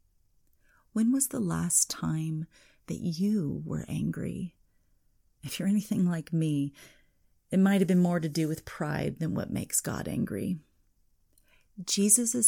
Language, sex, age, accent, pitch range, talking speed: English, female, 30-49, American, 155-190 Hz, 140 wpm